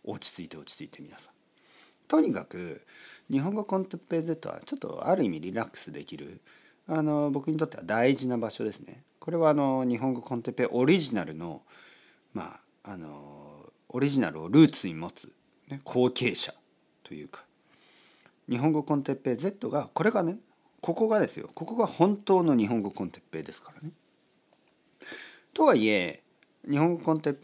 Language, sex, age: Japanese, male, 50-69